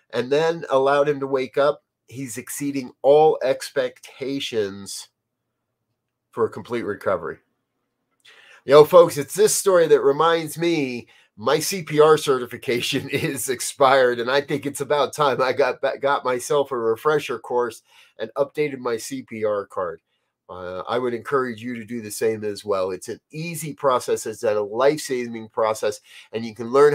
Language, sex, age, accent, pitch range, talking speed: English, male, 30-49, American, 115-155 Hz, 160 wpm